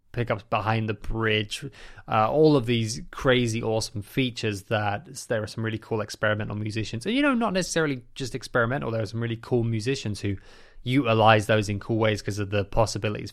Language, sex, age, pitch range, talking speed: English, male, 20-39, 105-125 Hz, 190 wpm